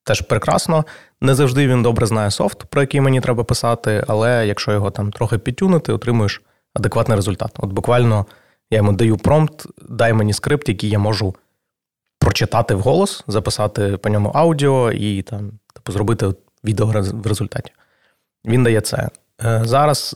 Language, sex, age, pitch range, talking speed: Ukrainian, male, 20-39, 105-120 Hz, 155 wpm